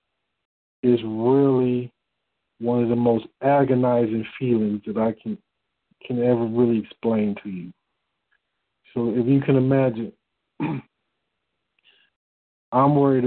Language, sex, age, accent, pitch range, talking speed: English, male, 40-59, American, 115-135 Hz, 110 wpm